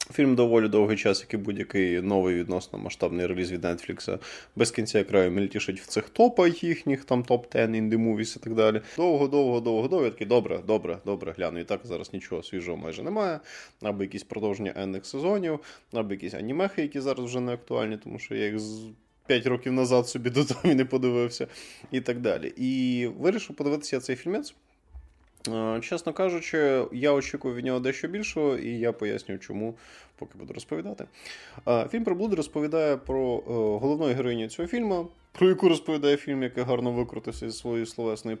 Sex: male